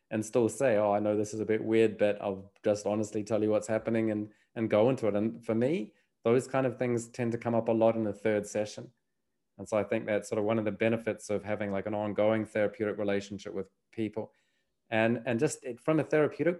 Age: 20-39